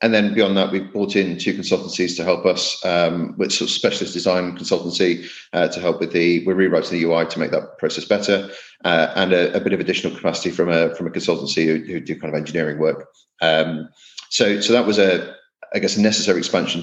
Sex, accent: male, British